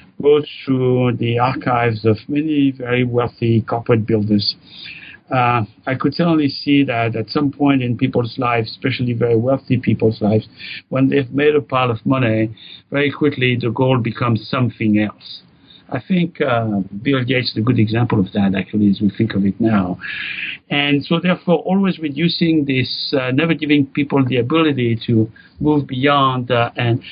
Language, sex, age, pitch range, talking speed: English, male, 60-79, 115-145 Hz, 170 wpm